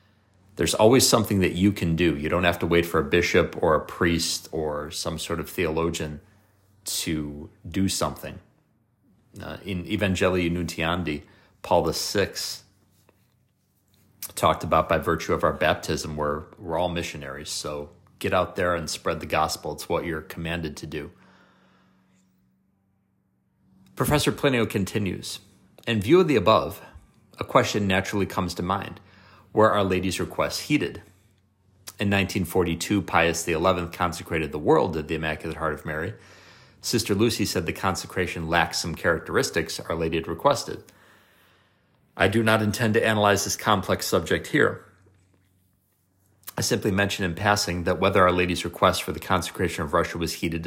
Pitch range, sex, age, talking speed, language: 85-100 Hz, male, 30-49, 150 wpm, English